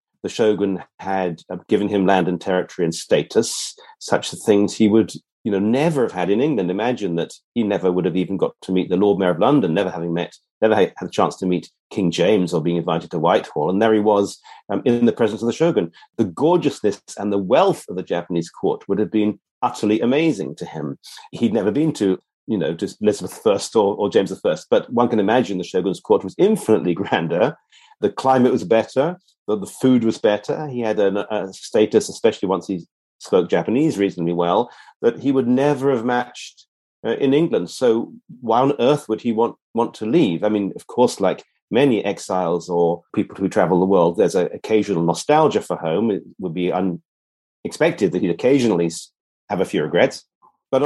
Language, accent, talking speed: English, British, 200 wpm